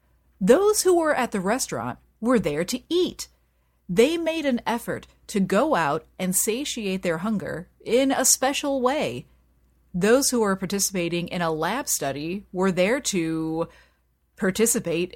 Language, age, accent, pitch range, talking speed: English, 30-49, American, 175-245 Hz, 145 wpm